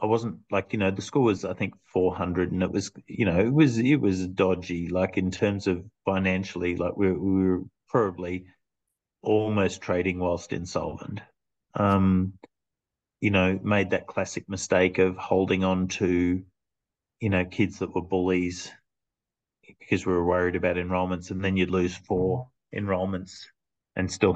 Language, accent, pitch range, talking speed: English, Australian, 90-100 Hz, 165 wpm